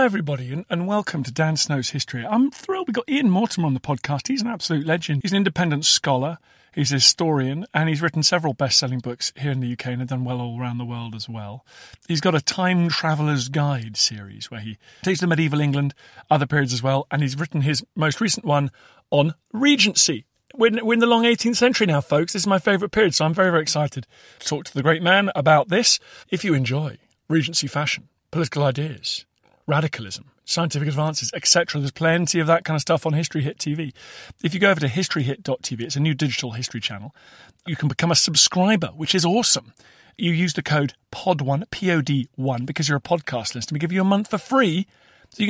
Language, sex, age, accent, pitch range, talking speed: English, male, 40-59, British, 140-190 Hz, 220 wpm